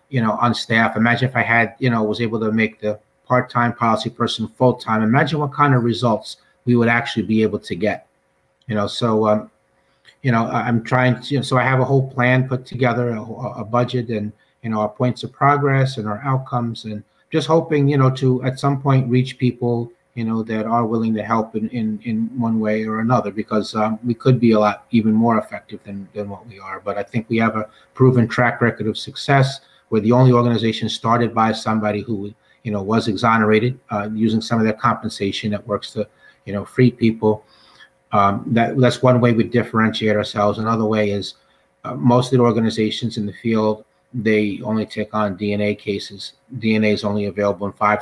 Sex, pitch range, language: male, 105-120 Hz, English